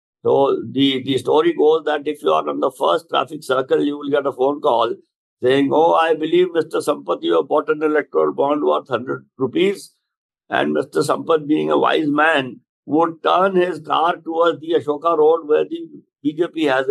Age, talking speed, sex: 60-79, 190 wpm, male